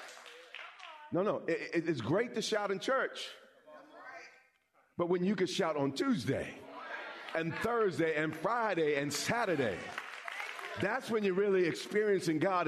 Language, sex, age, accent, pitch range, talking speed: English, male, 50-69, American, 140-185 Hz, 130 wpm